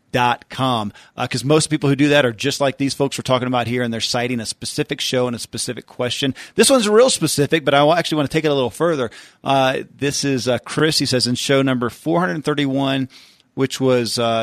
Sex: male